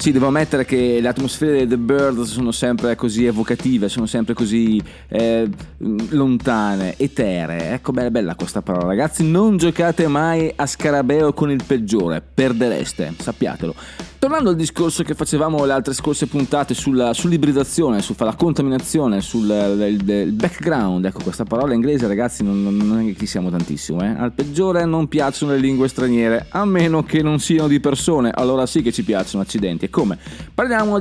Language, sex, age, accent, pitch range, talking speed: Italian, male, 30-49, native, 115-155 Hz, 175 wpm